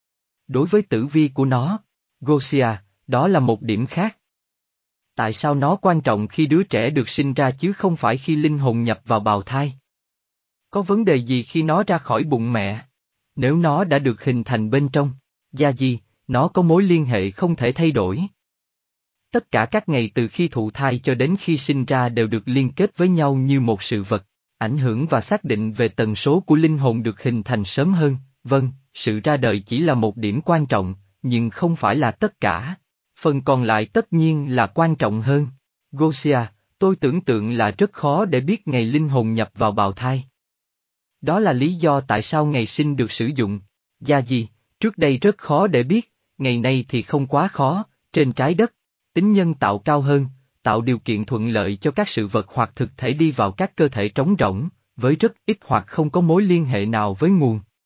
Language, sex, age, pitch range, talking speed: Vietnamese, male, 20-39, 115-160 Hz, 215 wpm